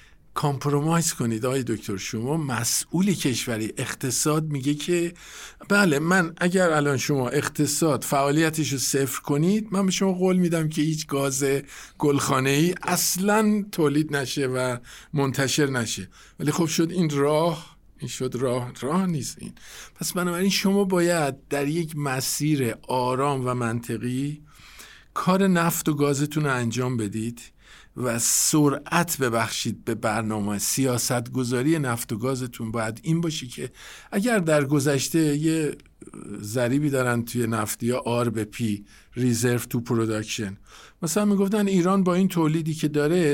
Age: 50-69